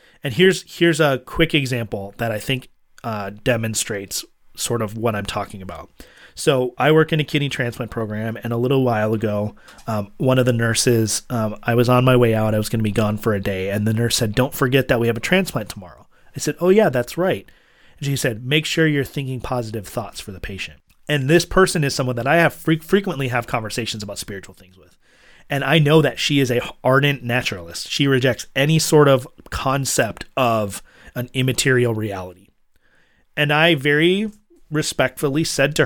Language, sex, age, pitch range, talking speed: English, male, 30-49, 110-140 Hz, 205 wpm